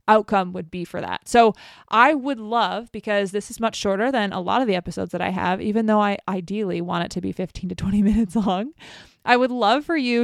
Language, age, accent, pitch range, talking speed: English, 20-39, American, 195-235 Hz, 240 wpm